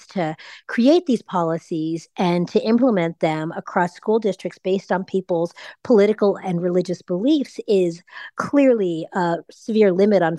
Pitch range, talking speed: 175-235 Hz, 140 wpm